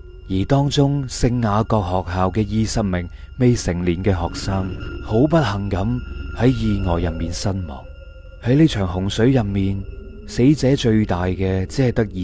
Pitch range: 90-125 Hz